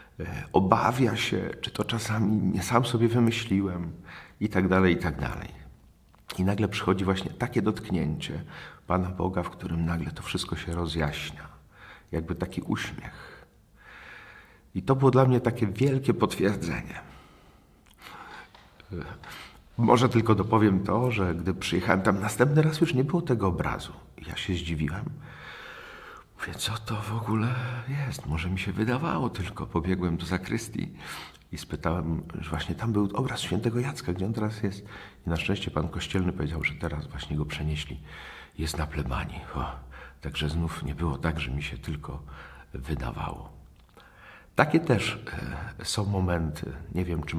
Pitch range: 75-105 Hz